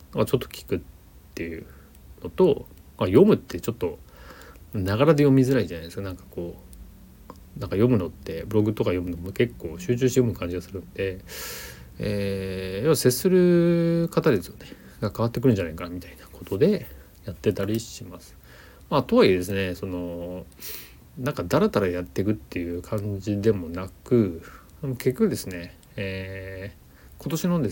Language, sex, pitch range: Japanese, male, 85-110 Hz